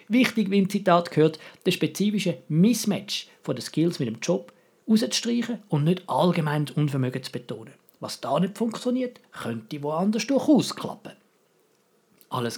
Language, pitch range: German, 140-210 Hz